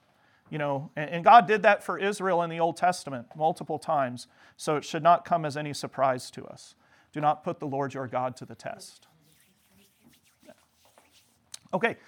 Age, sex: 40-59, male